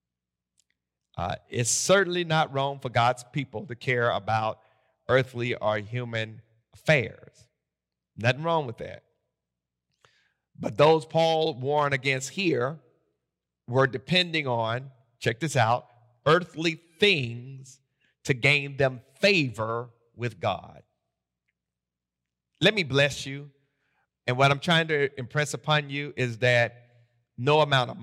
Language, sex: English, male